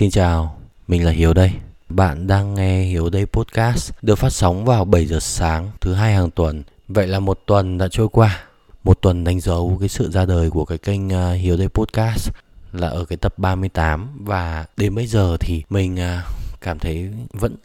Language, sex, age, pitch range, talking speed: Vietnamese, male, 20-39, 85-115 Hz, 195 wpm